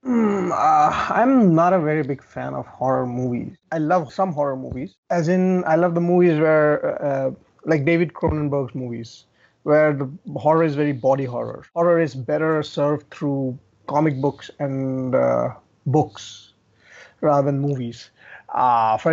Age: 30-49